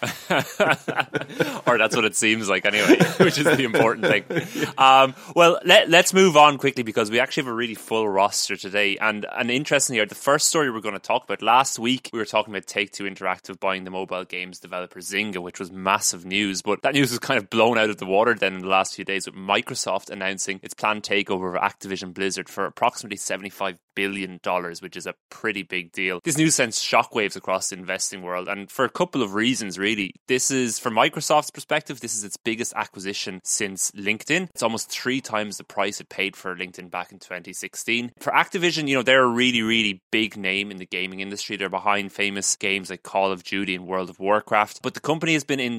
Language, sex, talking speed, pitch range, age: English, male, 220 wpm, 95-125 Hz, 20-39